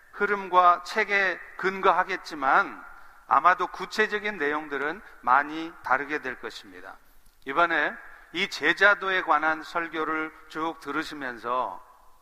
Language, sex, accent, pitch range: Korean, male, native, 155-210 Hz